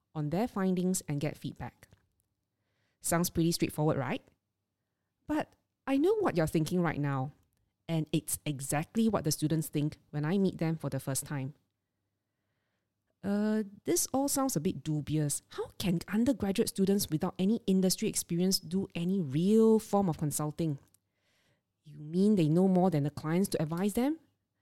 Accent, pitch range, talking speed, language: Malaysian, 135-190 Hz, 160 wpm, English